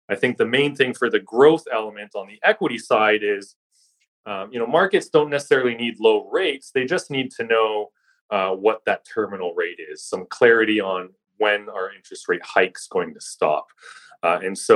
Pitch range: 105-150 Hz